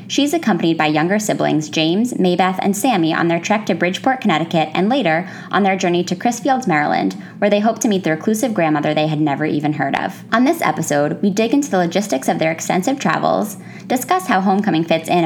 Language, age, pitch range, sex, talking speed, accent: English, 20-39, 160-215 Hz, female, 210 wpm, American